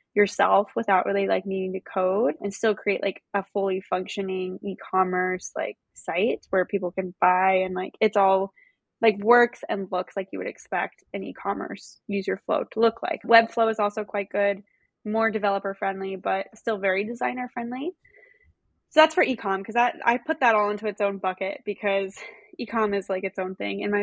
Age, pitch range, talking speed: 10-29, 195-230 Hz, 200 wpm